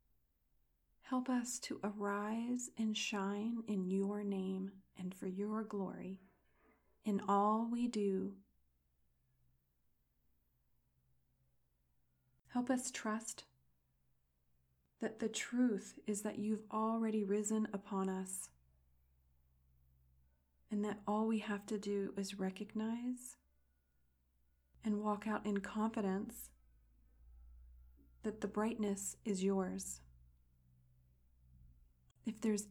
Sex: female